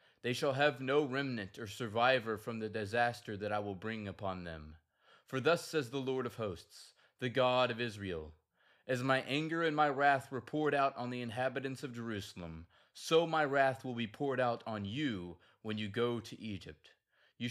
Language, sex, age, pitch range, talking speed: English, male, 20-39, 100-135 Hz, 190 wpm